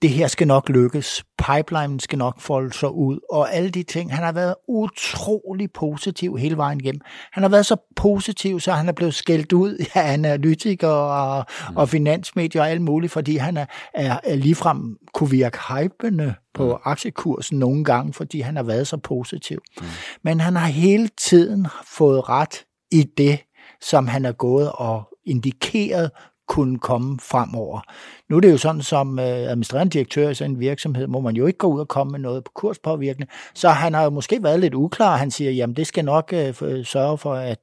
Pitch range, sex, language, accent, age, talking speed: 130-170 Hz, male, Danish, native, 60-79, 195 wpm